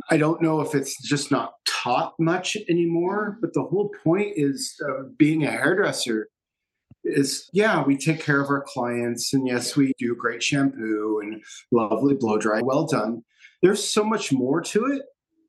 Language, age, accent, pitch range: English, 40-59, American, 135-170 Hz